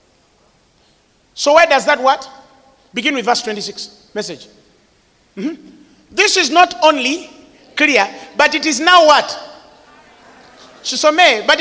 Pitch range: 225-355 Hz